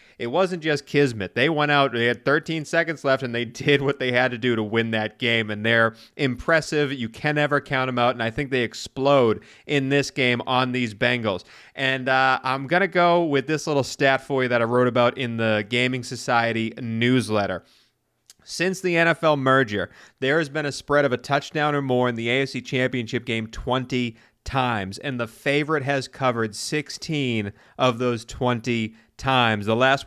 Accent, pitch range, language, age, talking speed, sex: American, 115-135 Hz, English, 30-49, 200 wpm, male